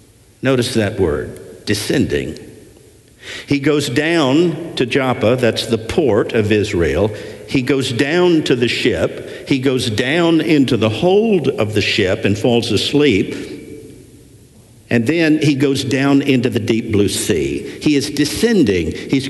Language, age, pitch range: English, 60-79, 115-145 Hz